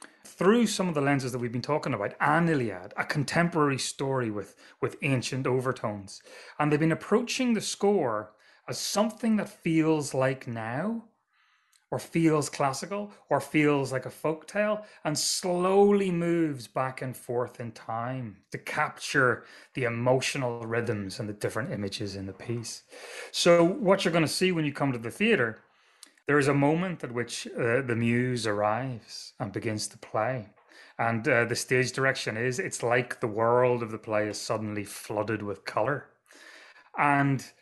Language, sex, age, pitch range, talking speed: English, male, 30-49, 105-145 Hz, 165 wpm